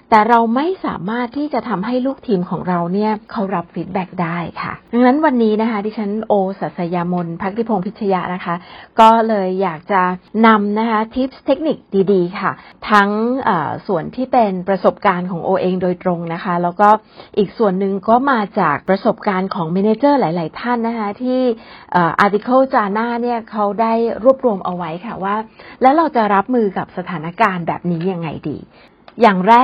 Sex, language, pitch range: female, Thai, 185-235 Hz